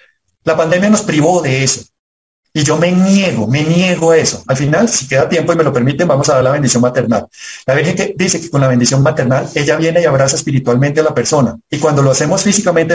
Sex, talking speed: male, 235 wpm